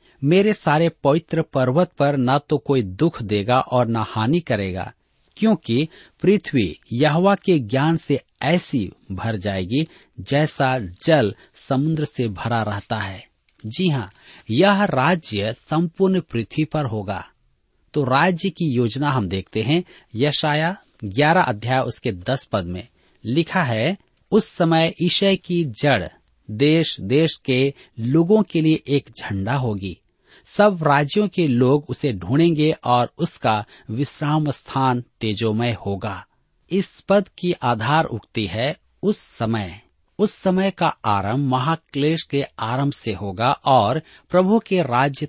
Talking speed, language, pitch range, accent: 135 wpm, Hindi, 110-165 Hz, native